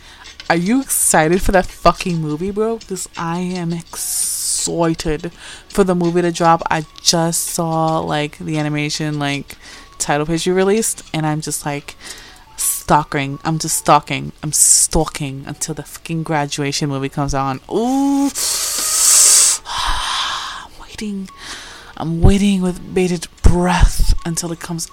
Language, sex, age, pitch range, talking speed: English, female, 20-39, 155-190 Hz, 135 wpm